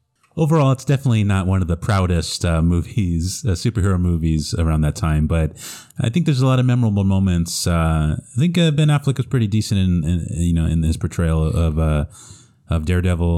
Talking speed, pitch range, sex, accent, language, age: 200 wpm, 80-110 Hz, male, American, English, 30-49